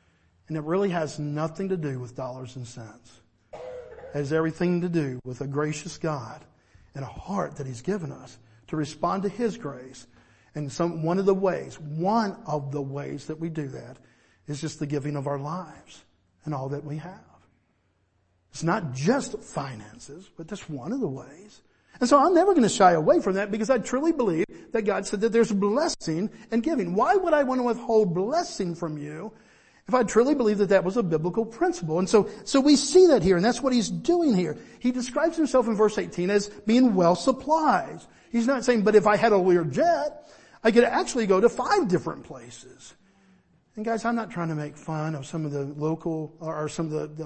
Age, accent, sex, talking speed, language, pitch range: 50-69, American, male, 210 wpm, English, 150-220 Hz